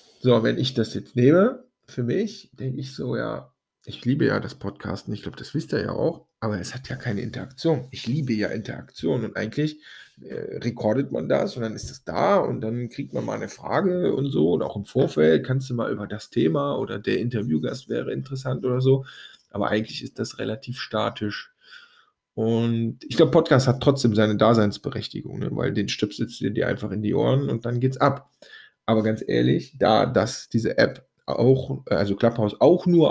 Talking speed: 205 wpm